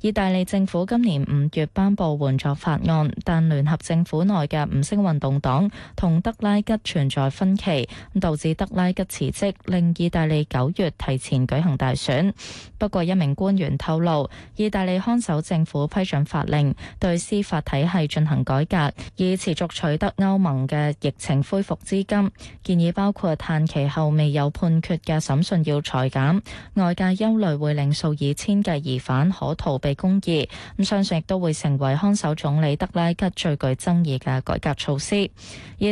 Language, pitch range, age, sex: Chinese, 145-190 Hz, 20-39, female